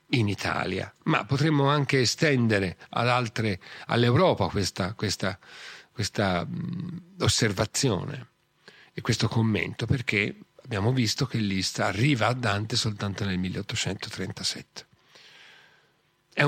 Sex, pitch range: male, 105-140 Hz